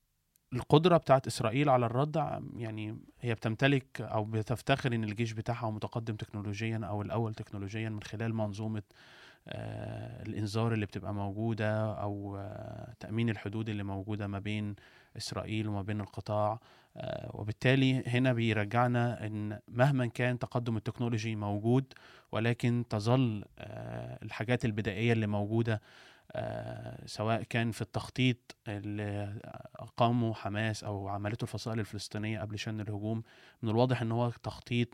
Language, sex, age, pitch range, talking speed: Arabic, male, 20-39, 105-120 Hz, 120 wpm